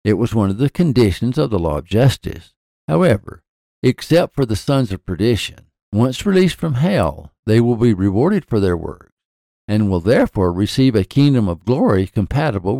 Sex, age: male, 60-79